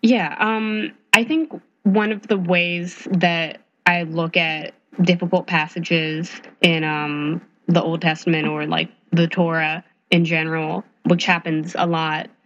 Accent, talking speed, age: American, 140 wpm, 20-39